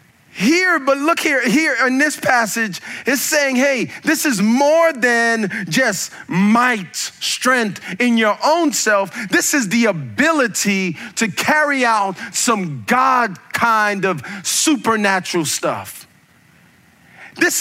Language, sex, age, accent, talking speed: English, male, 40-59, American, 125 wpm